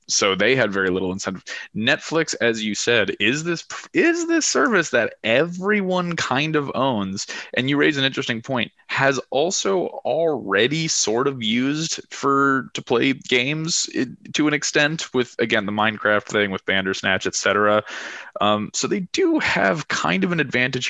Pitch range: 100-150 Hz